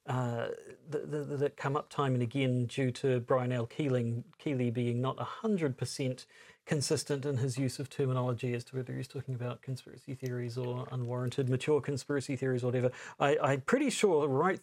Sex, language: male, English